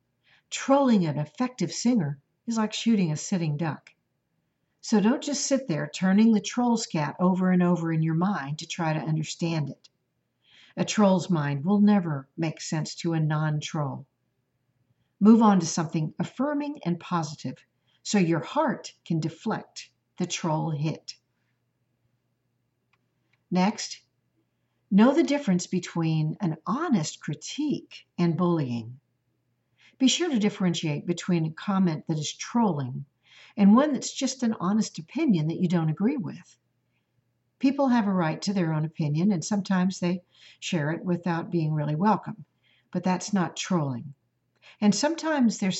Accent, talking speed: American, 145 wpm